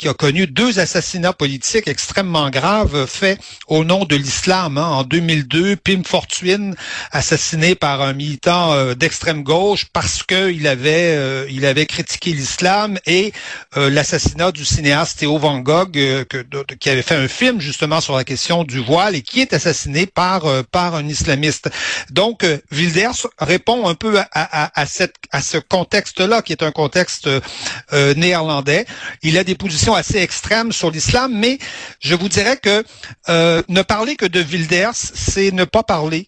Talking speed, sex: 180 wpm, male